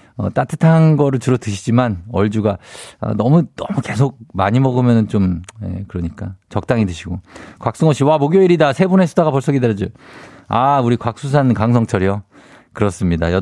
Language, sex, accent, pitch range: Korean, male, native, 105-155 Hz